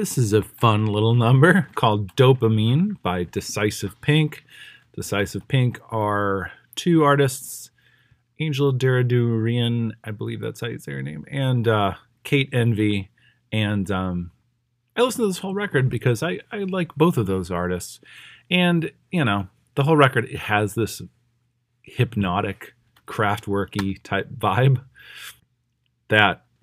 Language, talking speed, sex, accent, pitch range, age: English, 135 wpm, male, American, 100-130 Hz, 30-49